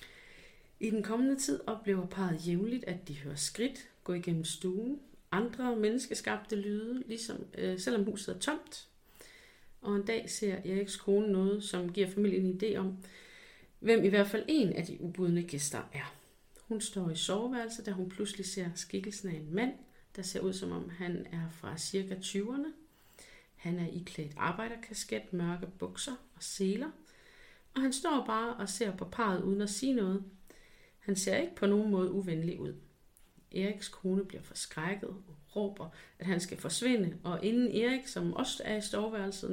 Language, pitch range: Danish, 180-225 Hz